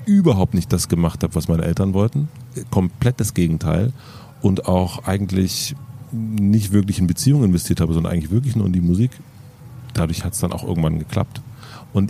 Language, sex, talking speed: German, male, 180 wpm